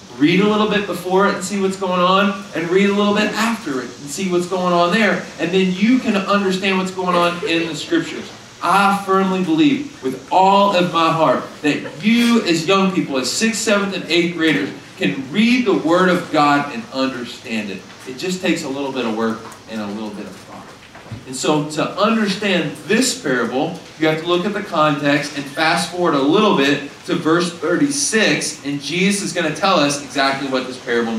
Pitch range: 145-200 Hz